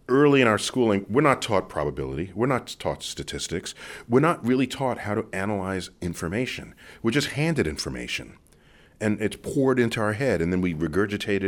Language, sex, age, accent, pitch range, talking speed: English, male, 40-59, American, 95-130 Hz, 180 wpm